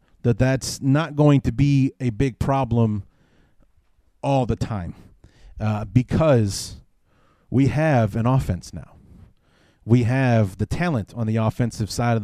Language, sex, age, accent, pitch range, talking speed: English, male, 30-49, American, 115-140 Hz, 135 wpm